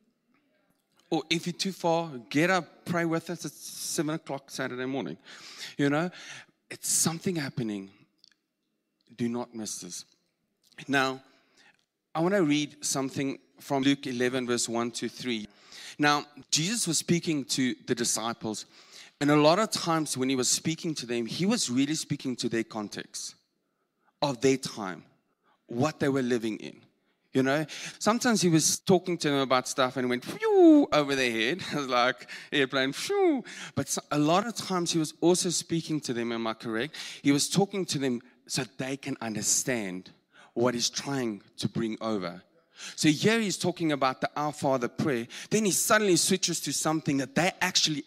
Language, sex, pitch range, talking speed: English, male, 125-170 Hz, 170 wpm